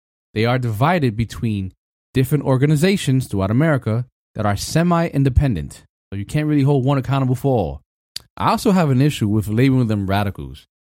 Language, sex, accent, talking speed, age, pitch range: English, male, American, 160 wpm, 20-39, 100-140 Hz